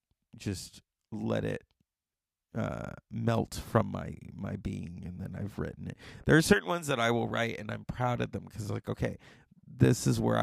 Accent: American